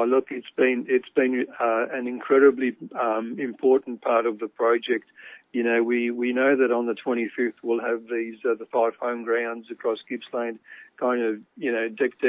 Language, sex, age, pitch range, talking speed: English, male, 60-79, 120-140 Hz, 185 wpm